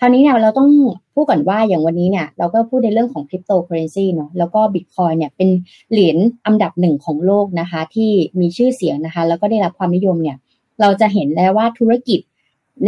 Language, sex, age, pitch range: Thai, female, 30-49, 165-210 Hz